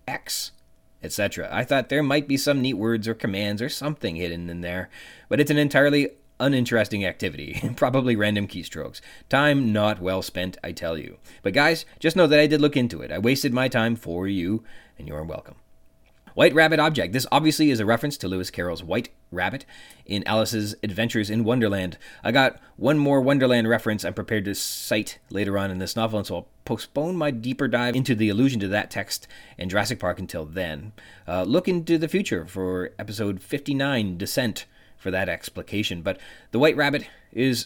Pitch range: 95-130 Hz